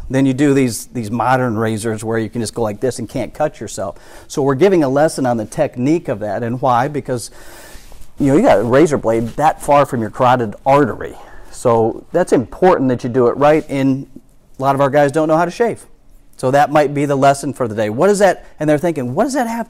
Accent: American